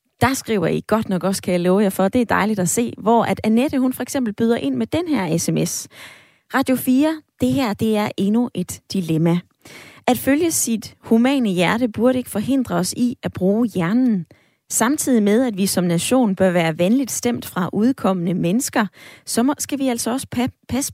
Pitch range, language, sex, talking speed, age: 190-250 Hz, Danish, female, 200 wpm, 20-39